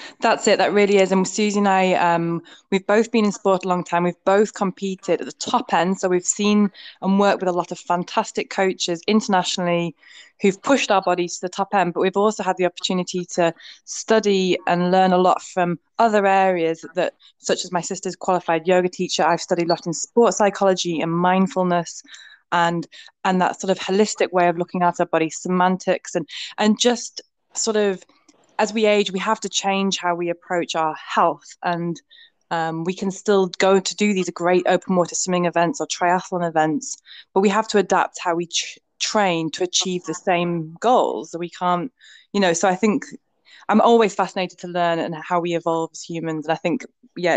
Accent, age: British, 20-39